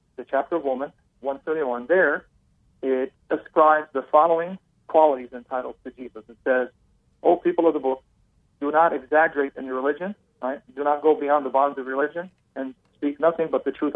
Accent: American